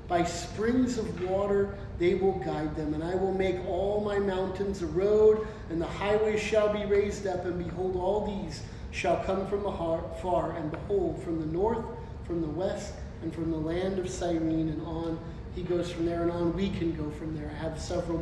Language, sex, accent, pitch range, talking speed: English, male, American, 170-220 Hz, 205 wpm